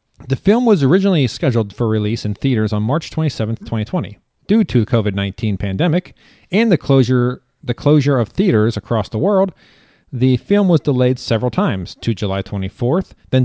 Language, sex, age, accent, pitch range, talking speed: English, male, 40-59, American, 110-145 Hz, 165 wpm